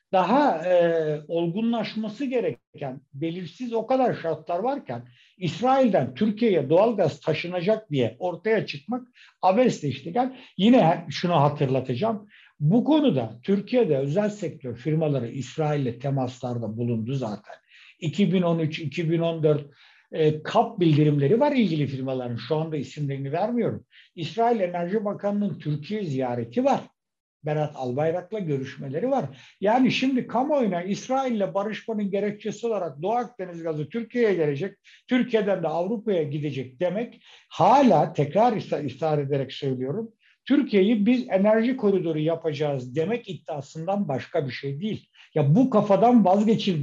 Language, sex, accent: Turkish, male, native